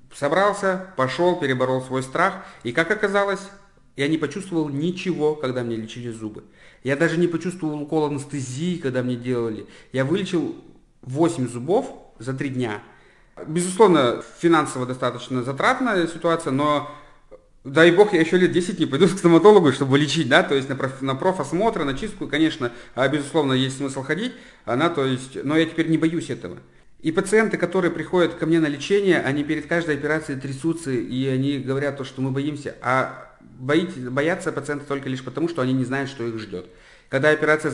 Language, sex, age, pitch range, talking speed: Russian, male, 40-59, 125-160 Hz, 165 wpm